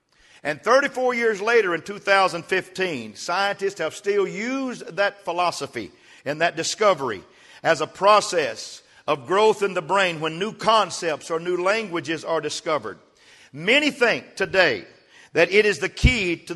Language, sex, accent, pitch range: English, male, American, 180-240 Hz